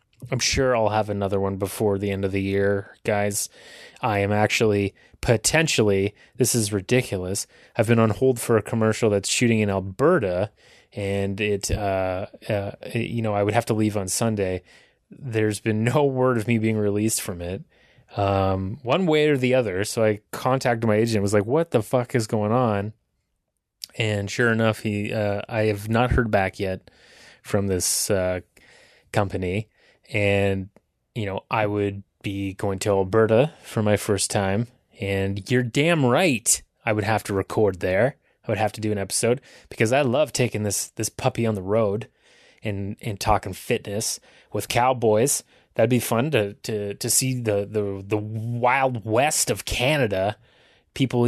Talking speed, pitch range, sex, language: 175 wpm, 100-125 Hz, male, English